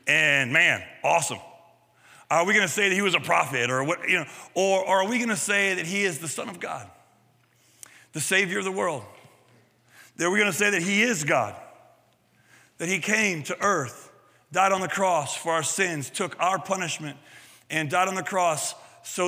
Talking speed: 200 wpm